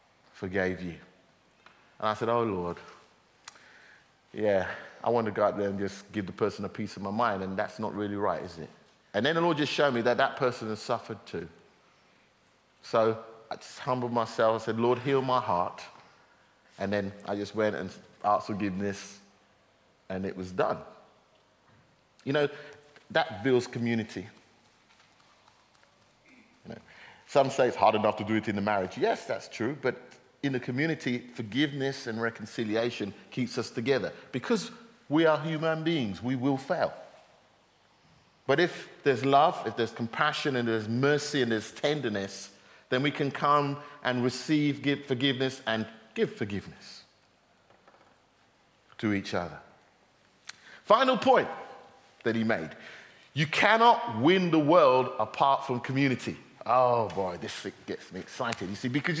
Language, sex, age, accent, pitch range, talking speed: English, male, 30-49, British, 105-140 Hz, 160 wpm